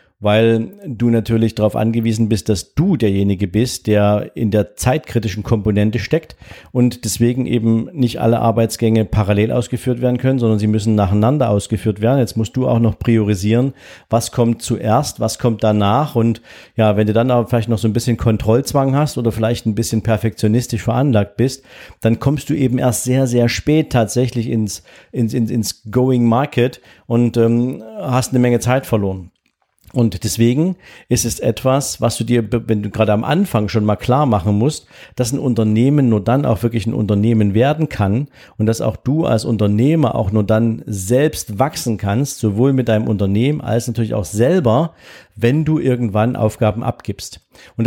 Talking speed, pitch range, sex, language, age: 175 wpm, 110-125 Hz, male, German, 50-69